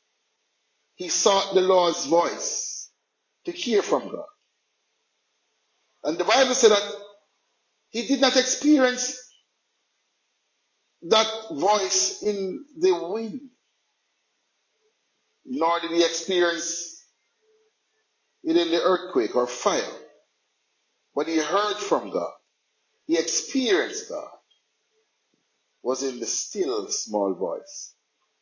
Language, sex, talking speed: English, male, 100 wpm